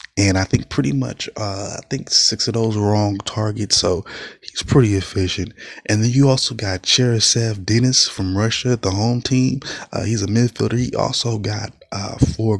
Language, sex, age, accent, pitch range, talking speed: English, male, 20-39, American, 100-115 Hz, 190 wpm